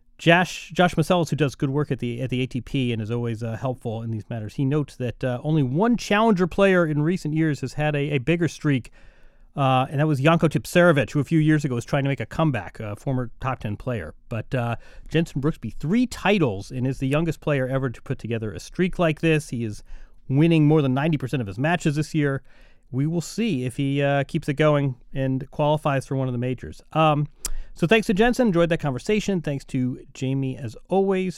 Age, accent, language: 30-49, American, English